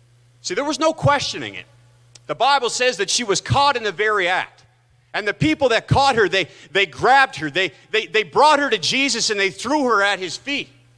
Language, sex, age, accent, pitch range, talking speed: English, male, 30-49, American, 120-195 Hz, 225 wpm